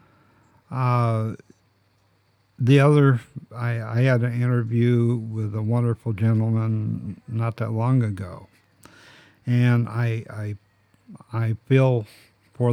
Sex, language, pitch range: male, English, 105-120 Hz